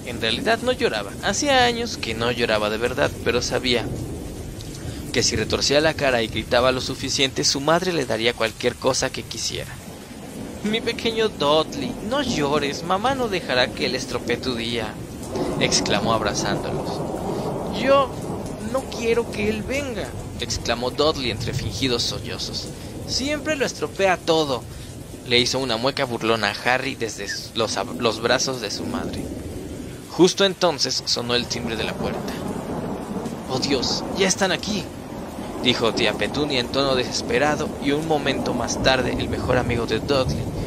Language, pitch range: Spanish, 115-155 Hz